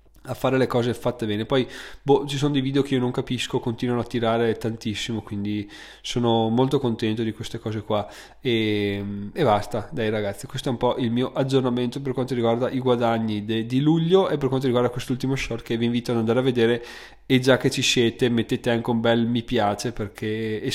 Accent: native